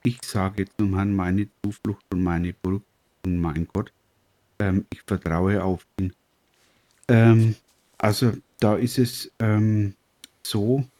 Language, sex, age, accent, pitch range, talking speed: German, male, 50-69, German, 100-115 Hz, 130 wpm